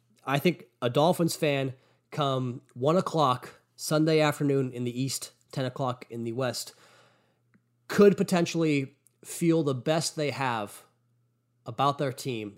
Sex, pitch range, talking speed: male, 115-145 Hz, 135 wpm